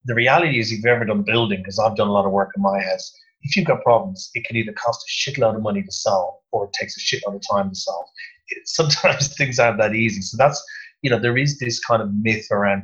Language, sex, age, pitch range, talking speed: English, male, 30-49, 105-145 Hz, 265 wpm